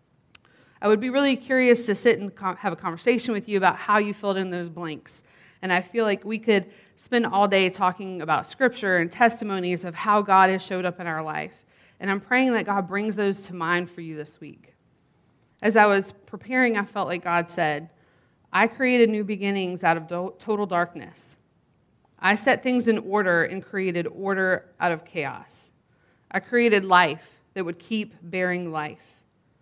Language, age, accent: English, 30-49, American